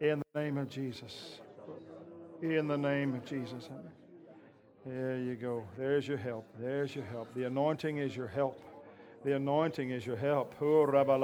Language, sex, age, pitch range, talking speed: English, male, 60-79, 125-150 Hz, 150 wpm